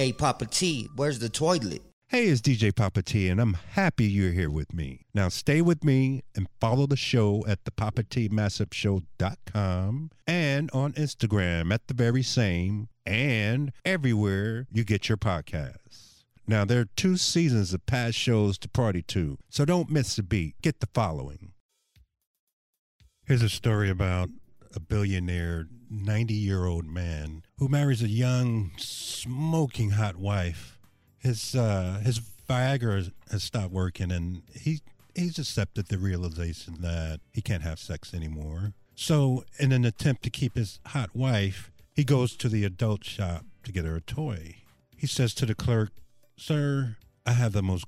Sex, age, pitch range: male, 50-69, 95-125 Hz